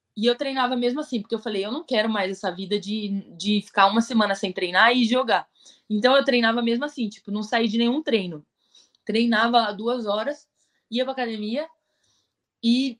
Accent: Brazilian